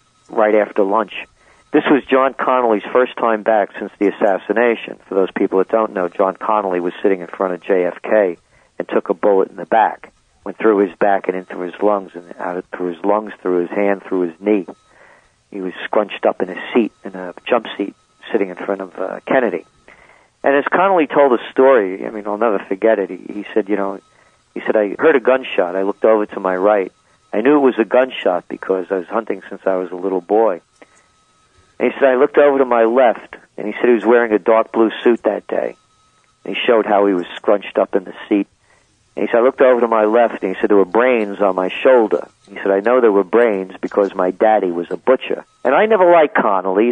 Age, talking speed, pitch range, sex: 50-69, 235 wpm, 95-115 Hz, male